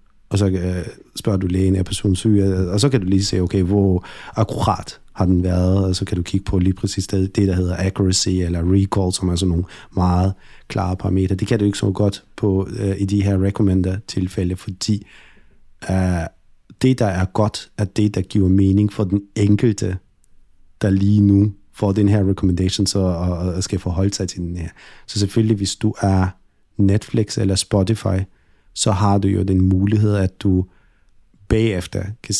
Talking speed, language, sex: 185 wpm, Danish, male